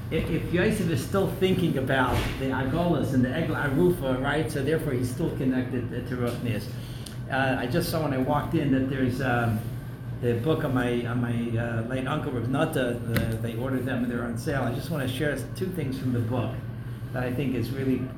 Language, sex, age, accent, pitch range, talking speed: English, male, 60-79, American, 120-135 Hz, 210 wpm